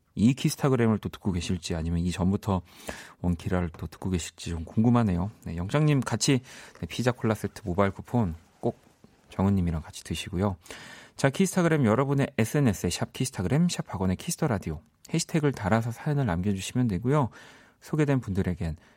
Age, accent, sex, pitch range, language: 40-59, native, male, 90-130 Hz, Korean